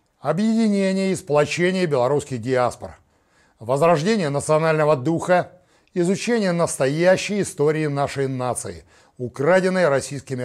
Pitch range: 135-180 Hz